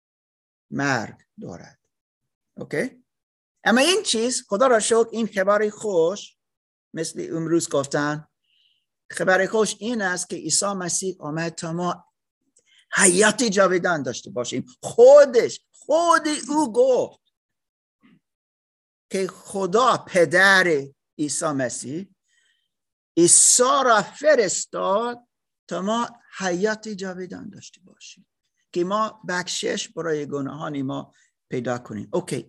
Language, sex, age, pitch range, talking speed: Persian, male, 50-69, 150-215 Hz, 105 wpm